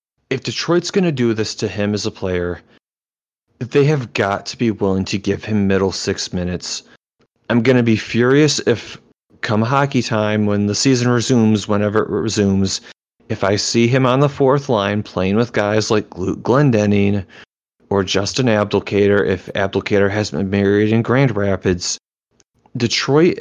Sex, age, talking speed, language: male, 30-49, 165 wpm, English